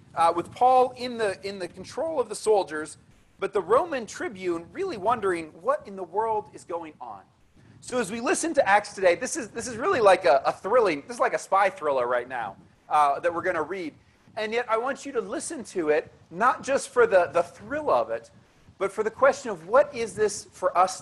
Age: 40-59